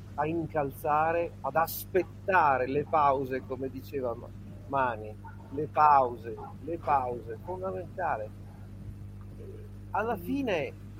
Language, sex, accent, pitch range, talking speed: Italian, male, native, 100-165 Hz, 85 wpm